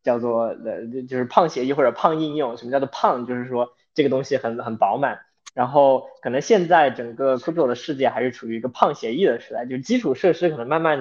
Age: 20-39